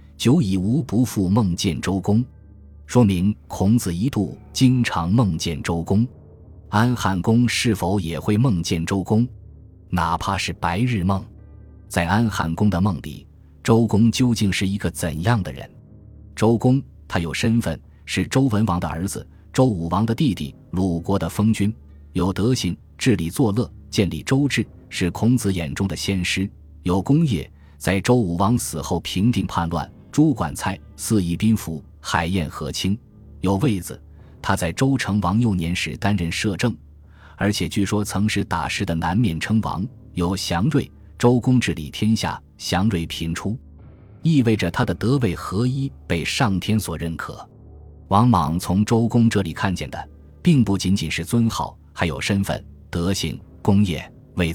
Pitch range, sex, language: 85-110 Hz, male, Chinese